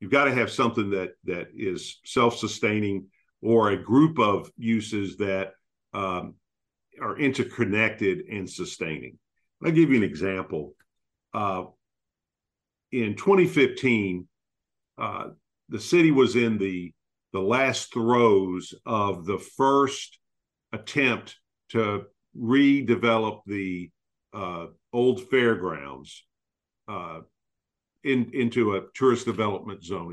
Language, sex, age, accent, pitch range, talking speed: English, male, 50-69, American, 95-130 Hz, 105 wpm